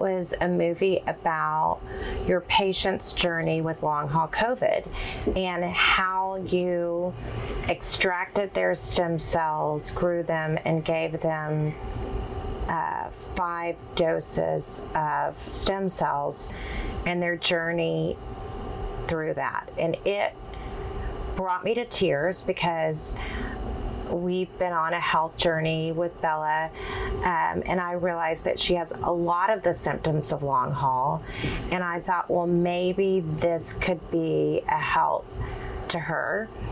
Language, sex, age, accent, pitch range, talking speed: English, female, 30-49, American, 160-180 Hz, 125 wpm